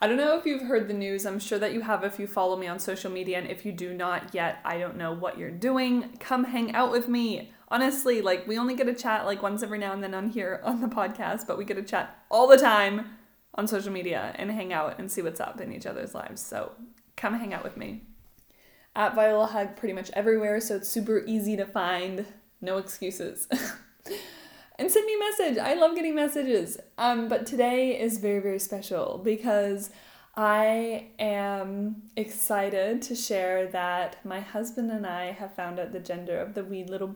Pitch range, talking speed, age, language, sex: 195-230 Hz, 215 wpm, 20-39, English, female